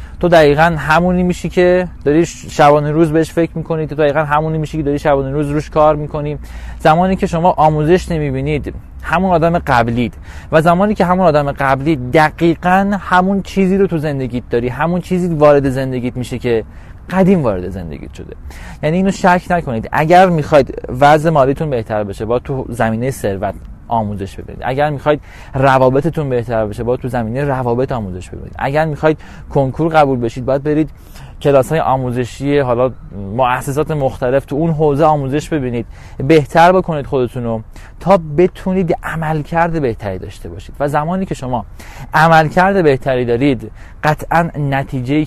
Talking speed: 155 wpm